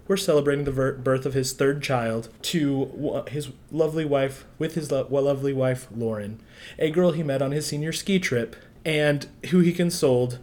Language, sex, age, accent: English, male, 20-39, American